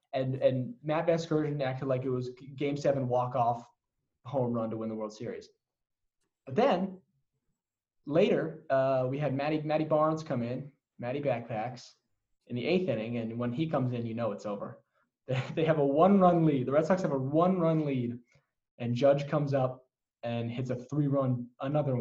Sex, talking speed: male, 175 wpm